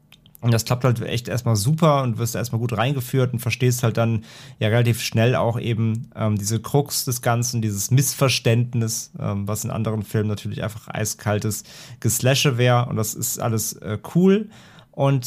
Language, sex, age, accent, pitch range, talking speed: German, male, 30-49, German, 115-135 Hz, 175 wpm